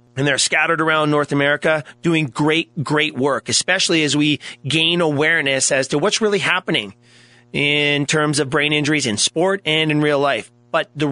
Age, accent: 30-49, American